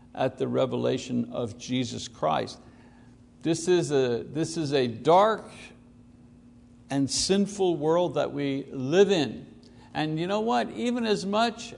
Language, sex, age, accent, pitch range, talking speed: English, male, 60-79, American, 120-185 Hz, 125 wpm